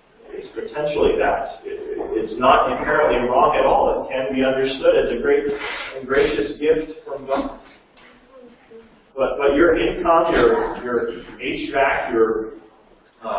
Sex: male